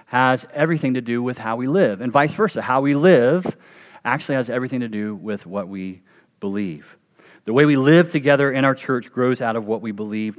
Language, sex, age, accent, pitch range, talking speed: English, male, 40-59, American, 120-150 Hz, 215 wpm